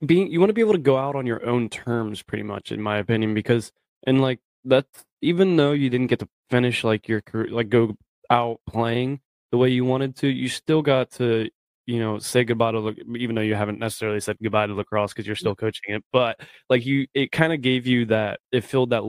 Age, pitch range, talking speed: 20-39, 105-125 Hz, 240 wpm